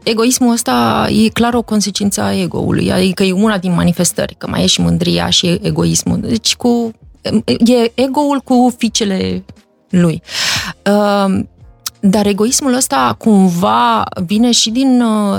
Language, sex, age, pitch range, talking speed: Romanian, female, 20-39, 195-245 Hz, 135 wpm